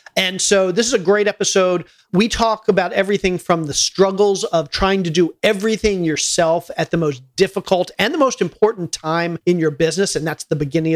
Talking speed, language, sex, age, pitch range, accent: 195 wpm, English, male, 40-59, 165-195 Hz, American